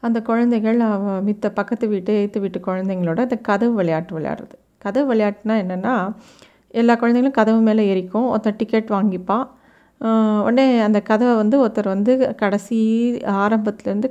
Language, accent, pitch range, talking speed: Tamil, native, 200-235 Hz, 135 wpm